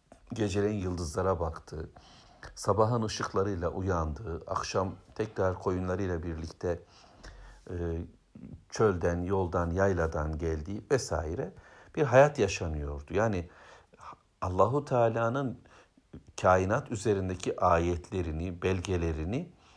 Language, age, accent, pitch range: Turkish, 60-79, native, 85-110 Hz